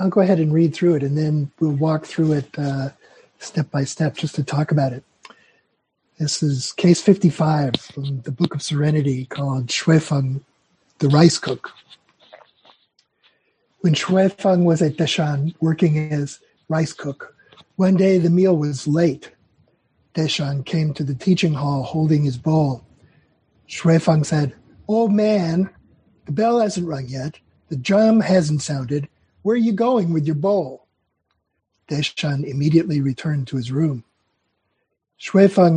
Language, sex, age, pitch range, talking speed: English, male, 60-79, 140-175 Hz, 145 wpm